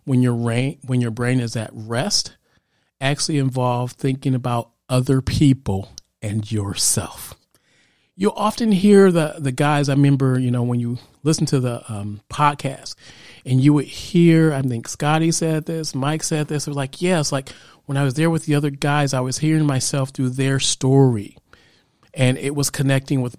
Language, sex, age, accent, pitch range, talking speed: English, male, 40-59, American, 125-150 Hz, 175 wpm